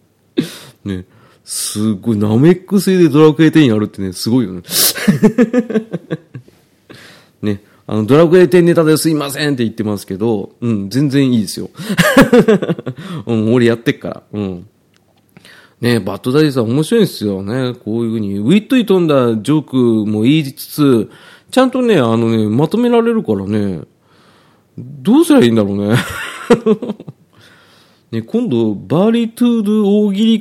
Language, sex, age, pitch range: Japanese, male, 40-59, 110-165 Hz